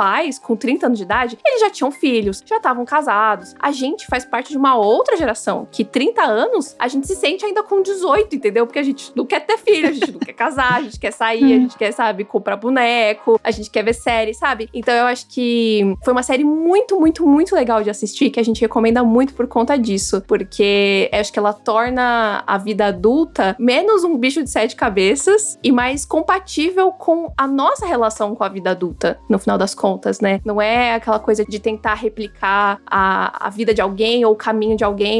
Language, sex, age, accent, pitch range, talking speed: Portuguese, female, 20-39, Brazilian, 215-275 Hz, 220 wpm